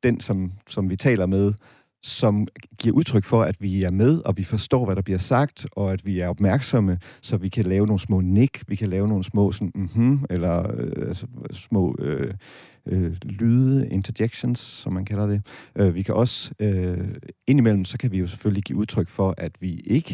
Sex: male